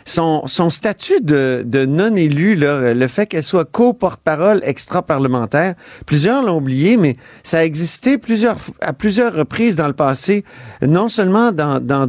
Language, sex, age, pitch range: French, male, 40-59, 145-200 Hz